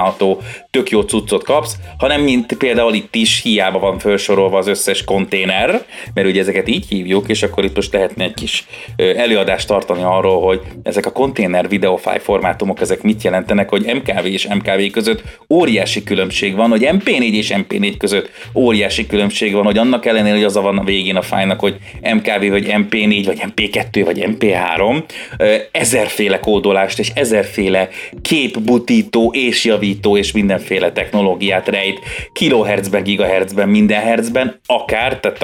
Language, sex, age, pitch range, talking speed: Hungarian, male, 30-49, 100-115 Hz, 150 wpm